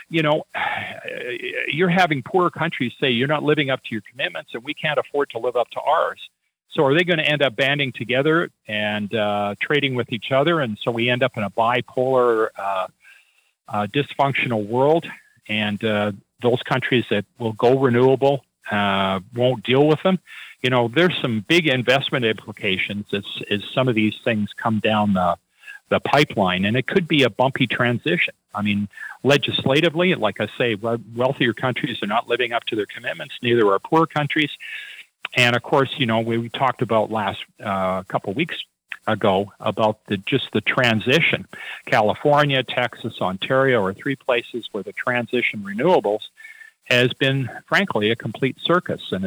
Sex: male